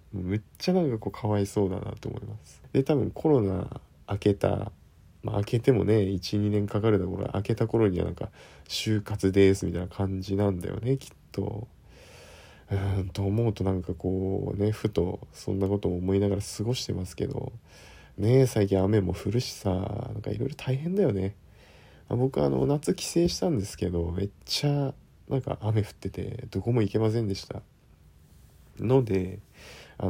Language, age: Japanese, 40-59